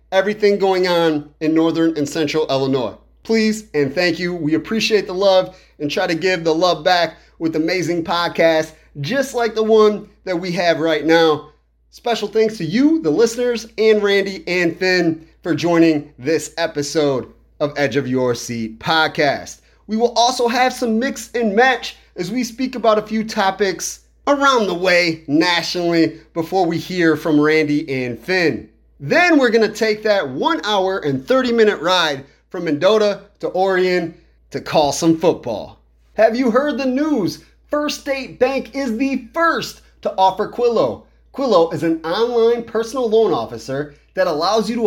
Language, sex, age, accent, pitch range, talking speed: English, male, 30-49, American, 165-235 Hz, 170 wpm